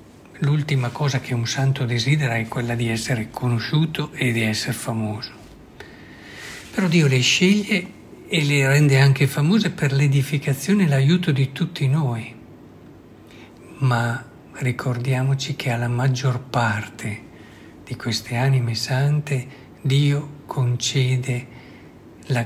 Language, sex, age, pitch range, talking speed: Italian, male, 60-79, 120-140 Hz, 120 wpm